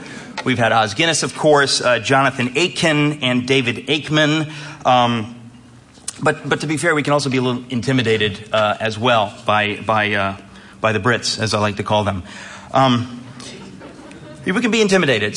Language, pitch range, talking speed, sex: English, 120-145 Hz, 175 wpm, male